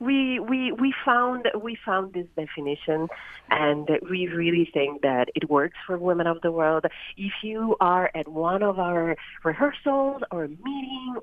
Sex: female